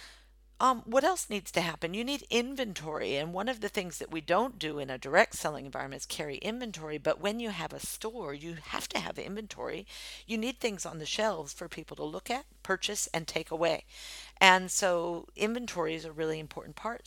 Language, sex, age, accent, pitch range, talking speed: English, female, 50-69, American, 155-205 Hz, 210 wpm